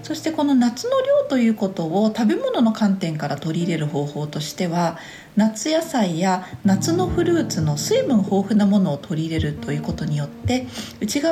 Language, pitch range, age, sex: Japanese, 160-255 Hz, 40-59, female